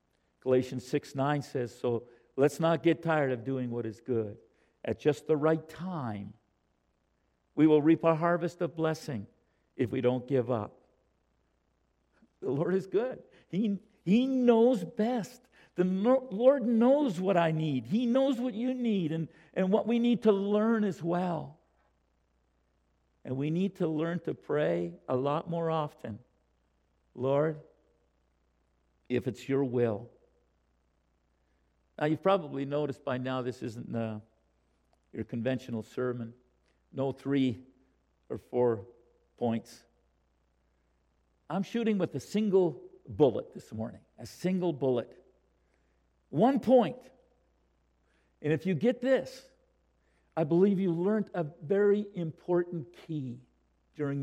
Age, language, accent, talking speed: 50-69, Russian, American, 130 wpm